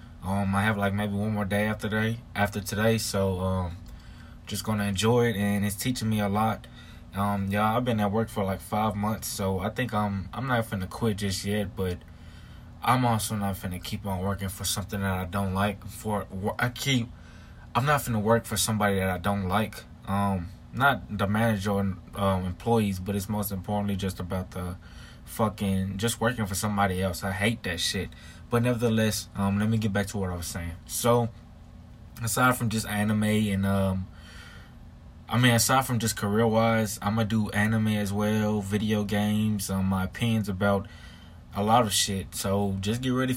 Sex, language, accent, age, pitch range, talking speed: male, English, American, 20-39, 95-110 Hz, 200 wpm